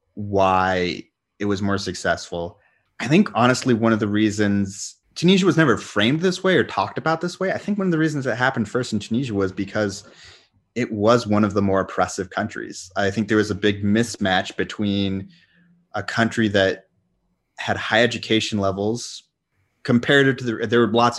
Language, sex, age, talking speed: English, male, 30-49, 185 wpm